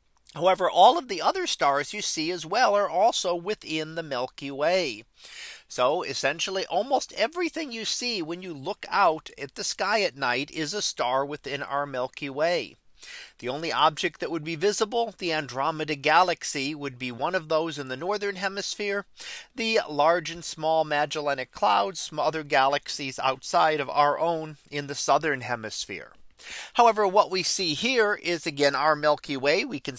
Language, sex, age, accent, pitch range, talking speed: English, male, 40-59, American, 145-190 Hz, 170 wpm